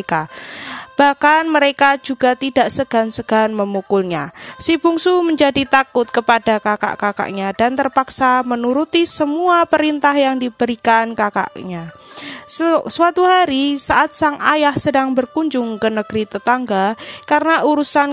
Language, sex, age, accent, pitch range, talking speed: Indonesian, female, 20-39, native, 225-285 Hz, 105 wpm